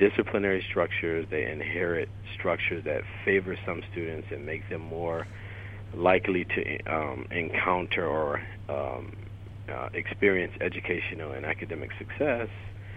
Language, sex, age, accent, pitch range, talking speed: English, male, 40-59, American, 90-100 Hz, 115 wpm